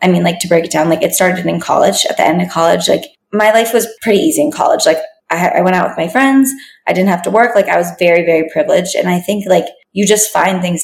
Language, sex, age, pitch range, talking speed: English, female, 20-39, 175-215 Hz, 290 wpm